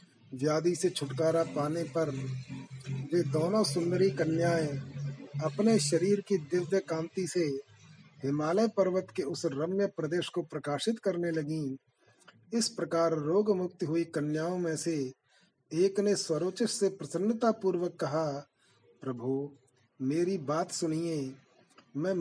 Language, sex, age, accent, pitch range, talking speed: Hindi, male, 40-59, native, 145-185 Hz, 120 wpm